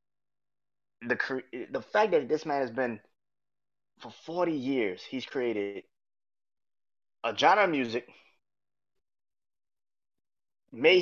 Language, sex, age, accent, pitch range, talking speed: English, male, 20-39, American, 110-160 Hz, 100 wpm